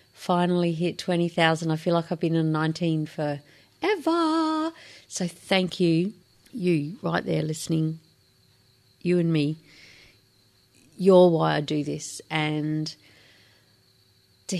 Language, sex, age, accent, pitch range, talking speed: English, female, 40-59, Australian, 155-205 Hz, 120 wpm